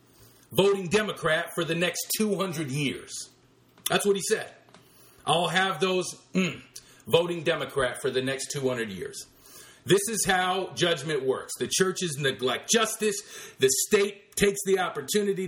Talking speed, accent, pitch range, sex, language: 140 wpm, American, 170-220 Hz, male, English